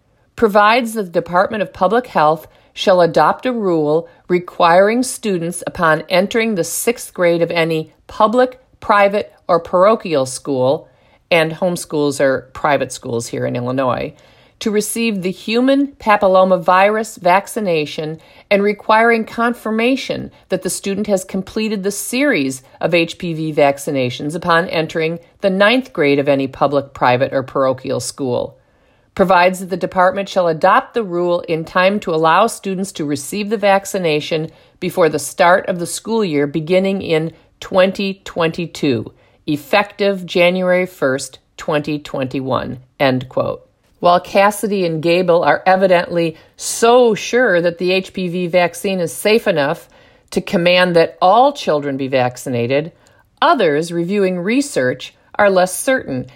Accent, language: American, English